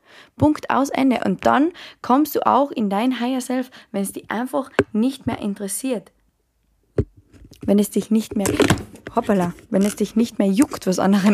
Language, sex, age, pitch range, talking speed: German, female, 20-39, 195-240 Hz, 175 wpm